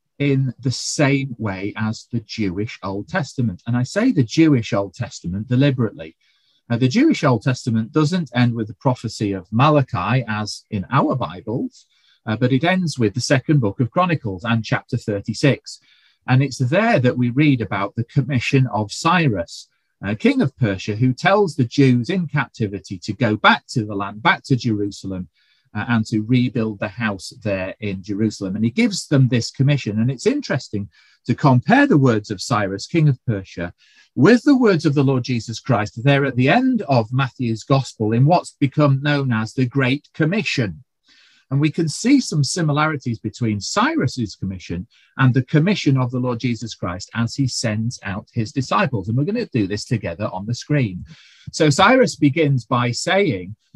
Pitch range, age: 110-145 Hz, 40-59